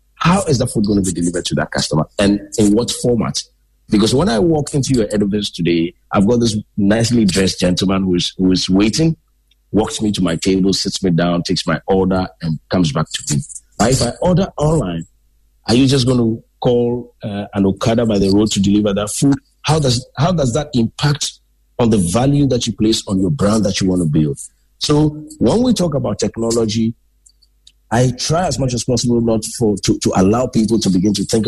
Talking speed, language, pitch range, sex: 215 wpm, English, 95-135 Hz, male